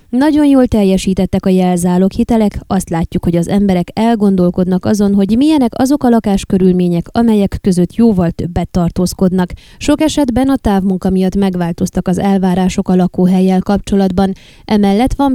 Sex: female